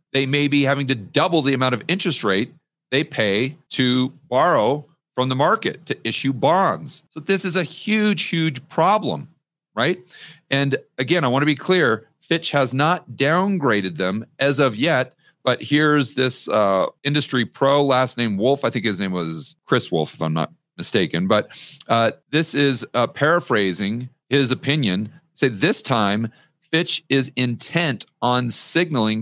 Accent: American